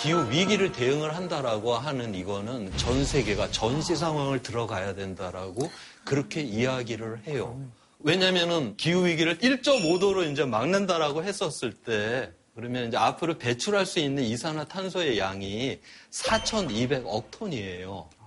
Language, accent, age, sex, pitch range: Korean, native, 40-59, male, 110-180 Hz